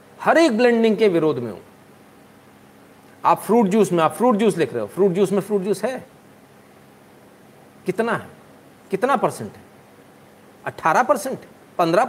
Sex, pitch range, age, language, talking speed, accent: male, 135-210 Hz, 40-59, Hindi, 155 wpm, native